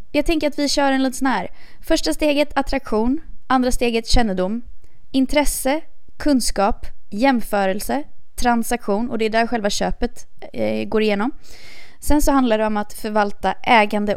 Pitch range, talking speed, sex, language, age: 200-275 Hz, 155 wpm, female, Swedish, 20-39